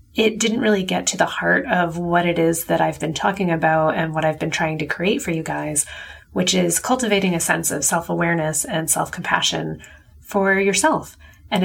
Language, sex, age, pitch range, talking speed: English, female, 30-49, 160-195 Hz, 205 wpm